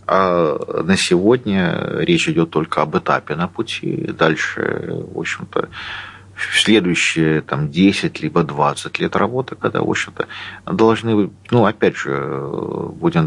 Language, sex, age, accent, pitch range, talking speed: Russian, male, 40-59, native, 85-115 Hz, 135 wpm